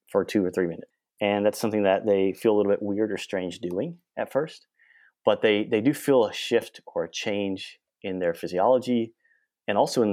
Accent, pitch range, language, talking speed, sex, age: American, 95-115 Hz, English, 215 wpm, male, 30-49